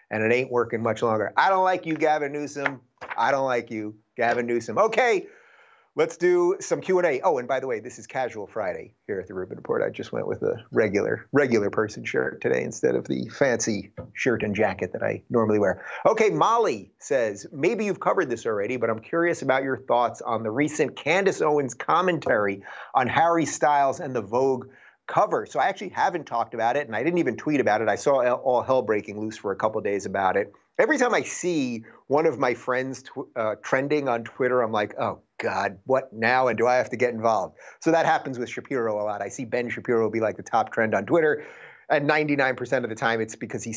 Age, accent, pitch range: 30-49, American, 110-150 Hz